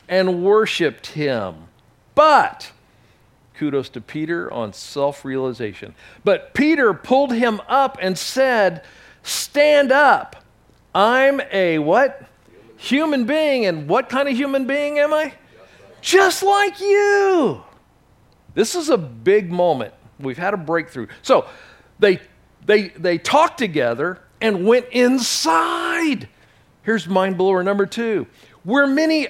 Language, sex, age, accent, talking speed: English, male, 50-69, American, 120 wpm